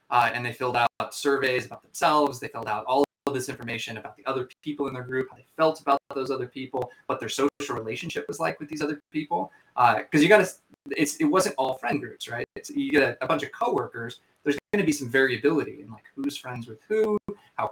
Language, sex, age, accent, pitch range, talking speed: English, male, 20-39, American, 115-145 Hz, 235 wpm